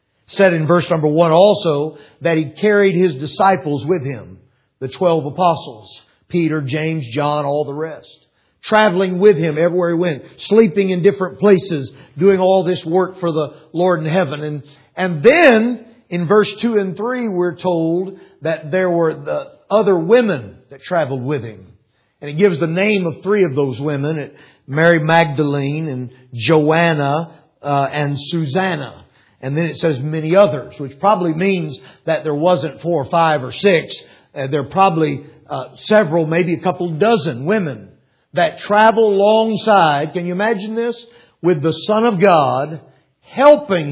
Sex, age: male, 40-59